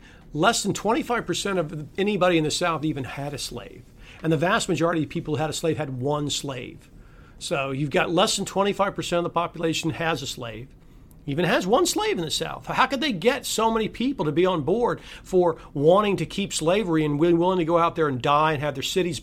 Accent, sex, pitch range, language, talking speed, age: American, male, 150-190 Hz, English, 225 wpm, 50-69